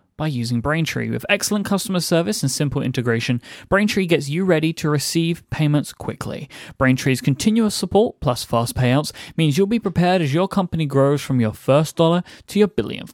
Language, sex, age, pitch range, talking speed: English, male, 30-49, 130-175 Hz, 180 wpm